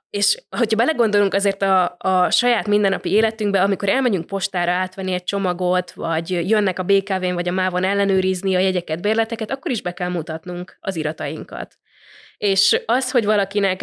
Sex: female